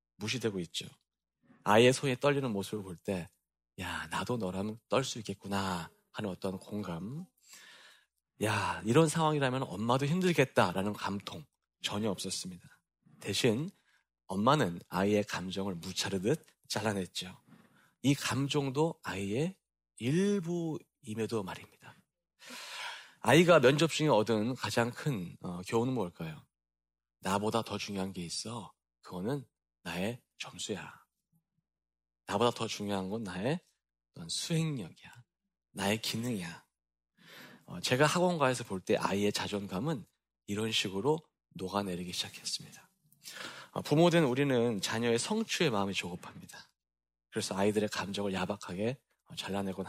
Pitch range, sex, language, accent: 95-140 Hz, male, Korean, native